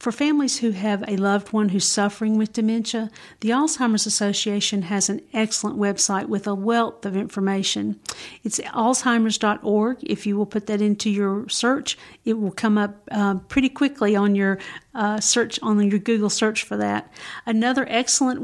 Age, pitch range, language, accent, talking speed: 50-69, 205-240 Hz, English, American, 170 wpm